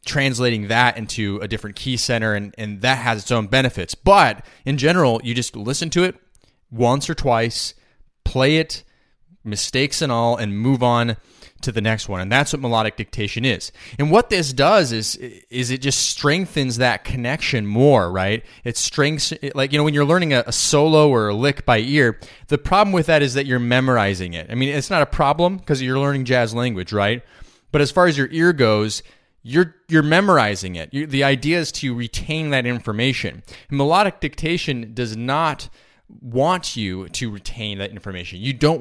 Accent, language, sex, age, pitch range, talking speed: American, English, male, 20-39, 105-140 Hz, 195 wpm